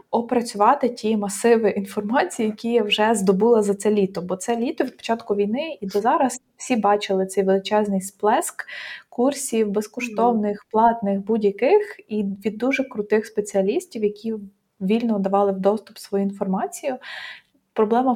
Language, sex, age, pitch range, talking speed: Ukrainian, female, 20-39, 200-230 Hz, 140 wpm